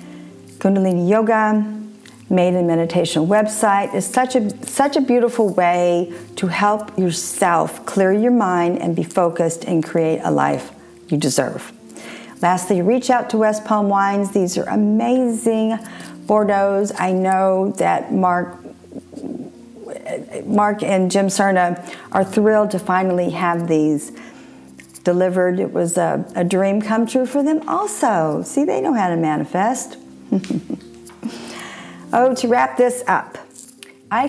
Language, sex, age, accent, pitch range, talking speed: English, female, 50-69, American, 170-215 Hz, 135 wpm